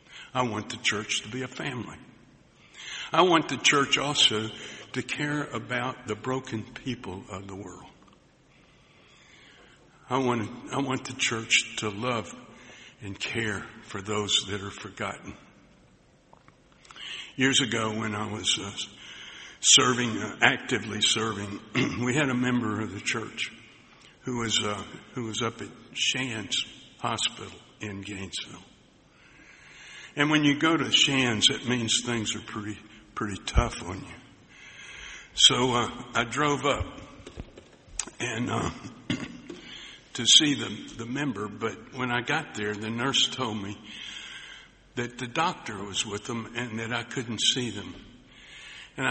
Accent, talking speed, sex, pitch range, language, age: American, 140 wpm, male, 105-130 Hz, English, 60-79